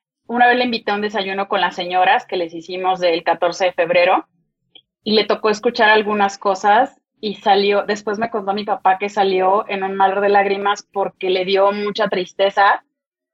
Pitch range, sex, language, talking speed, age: 190-220 Hz, female, English, 190 wpm, 30-49